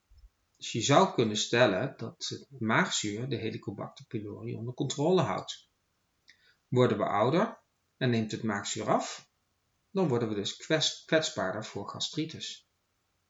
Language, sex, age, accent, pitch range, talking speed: Dutch, male, 40-59, Dutch, 110-145 Hz, 130 wpm